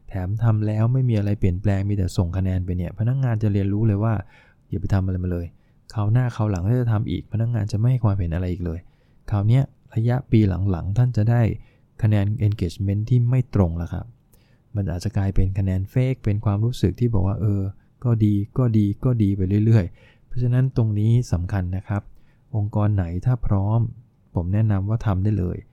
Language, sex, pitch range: English, male, 100-120 Hz